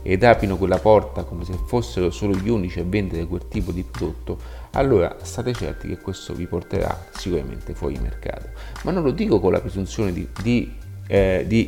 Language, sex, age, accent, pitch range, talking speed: Italian, male, 30-49, native, 90-115 Hz, 190 wpm